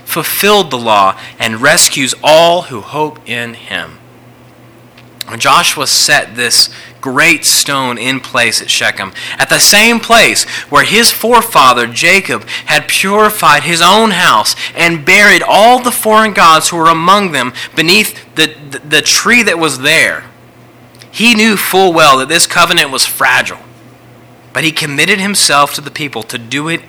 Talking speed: 150 wpm